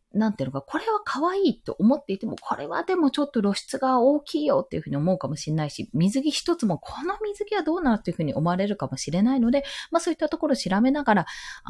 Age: 20-39